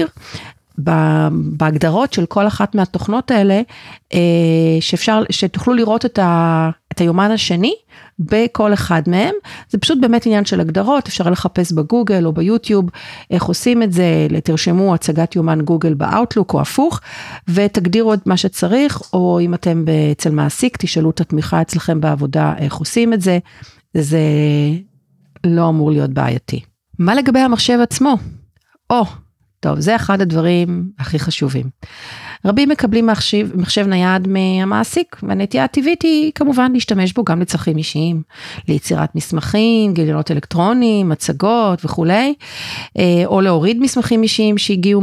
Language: Hebrew